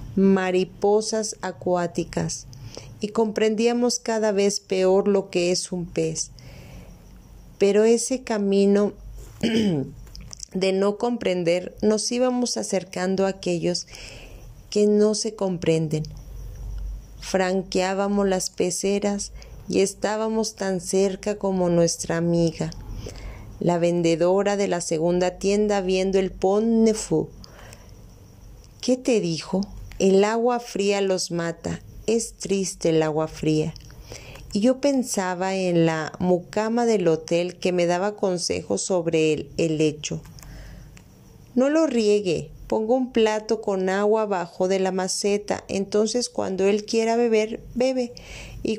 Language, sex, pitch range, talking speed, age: Spanish, female, 170-215 Hz, 115 wpm, 40-59